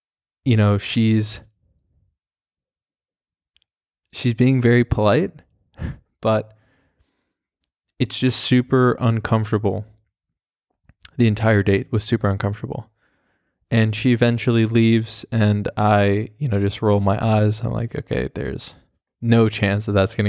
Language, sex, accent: English, male, American